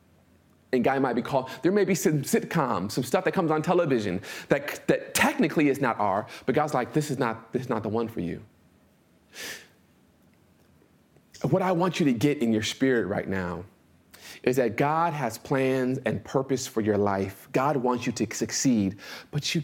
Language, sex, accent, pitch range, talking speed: English, male, American, 115-160 Hz, 190 wpm